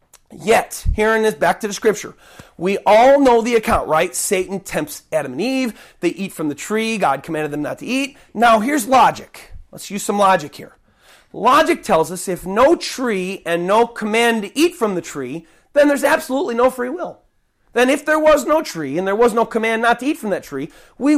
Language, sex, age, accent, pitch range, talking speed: English, male, 30-49, American, 175-250 Hz, 215 wpm